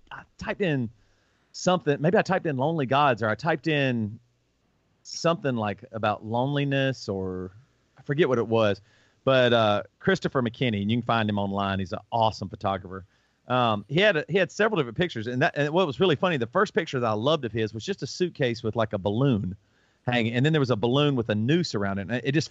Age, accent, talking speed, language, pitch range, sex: 40-59, American, 225 wpm, English, 115-160 Hz, male